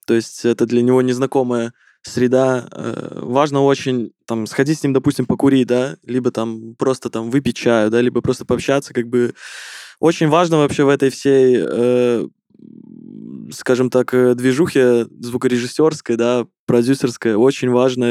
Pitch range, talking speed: 120-140 Hz, 145 wpm